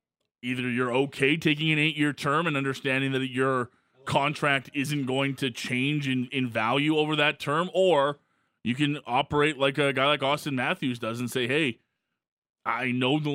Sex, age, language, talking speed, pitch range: male, 20-39, English, 180 wpm, 120-145 Hz